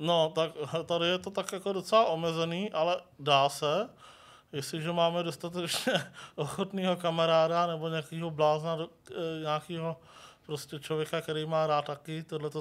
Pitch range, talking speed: 145-165 Hz, 135 wpm